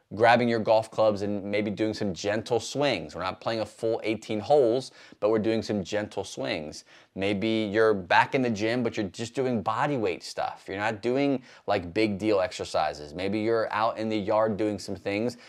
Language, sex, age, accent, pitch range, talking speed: English, male, 20-39, American, 100-120 Hz, 200 wpm